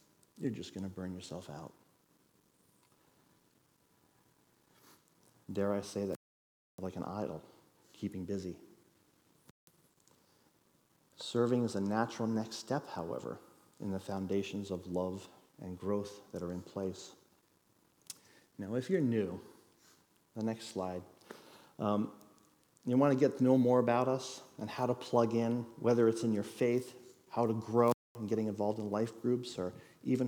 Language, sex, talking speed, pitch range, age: Dutch, male, 145 wpm, 95-115 Hz, 40-59